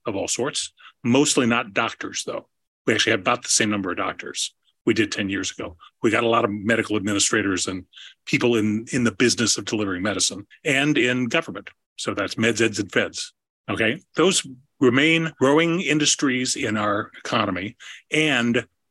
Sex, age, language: male, 40-59, English